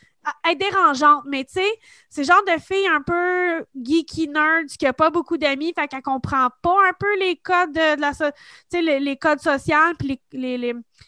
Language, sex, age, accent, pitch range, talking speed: French, female, 20-39, Canadian, 255-330 Hz, 215 wpm